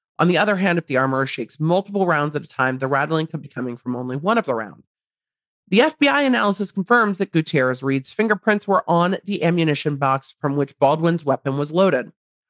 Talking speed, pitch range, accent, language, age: 200 wpm, 150-225 Hz, American, English, 40-59